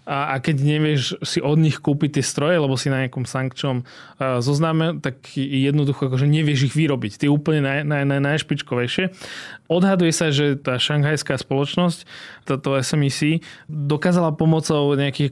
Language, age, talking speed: Slovak, 20-39, 150 wpm